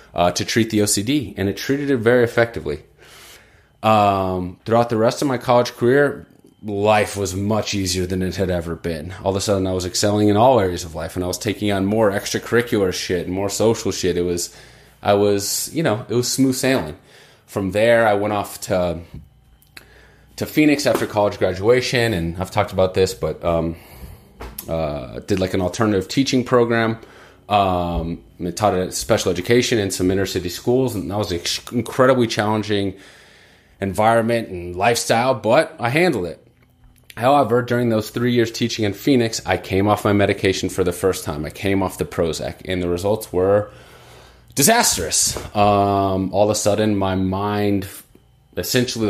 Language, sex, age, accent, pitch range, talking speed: English, male, 30-49, American, 95-115 Hz, 180 wpm